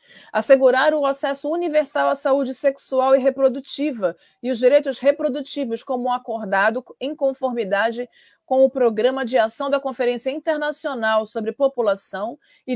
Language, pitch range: Portuguese, 235-285 Hz